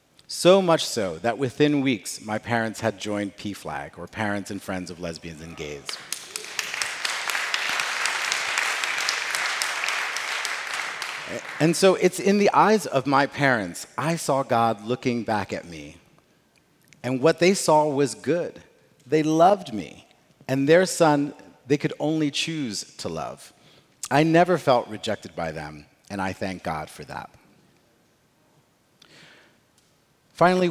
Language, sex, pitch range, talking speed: English, male, 100-150 Hz, 130 wpm